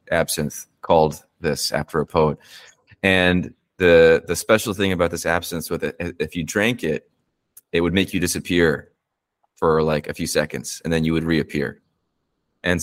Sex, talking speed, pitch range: male, 170 wpm, 80-90 Hz